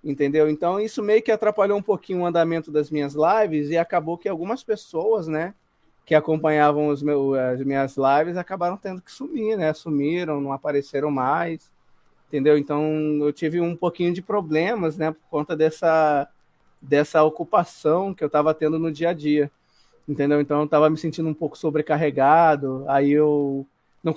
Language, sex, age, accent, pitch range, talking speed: Portuguese, male, 20-39, Brazilian, 150-205 Hz, 170 wpm